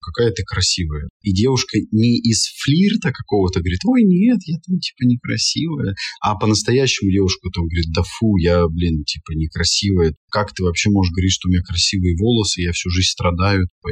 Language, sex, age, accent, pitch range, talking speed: Russian, male, 20-39, native, 90-110 Hz, 180 wpm